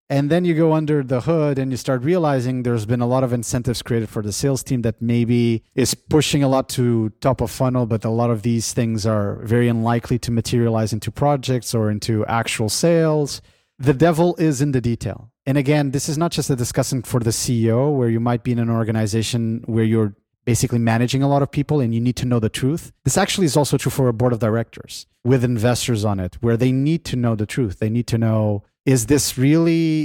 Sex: male